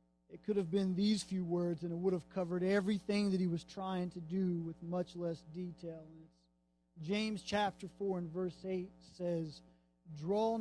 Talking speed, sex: 175 wpm, male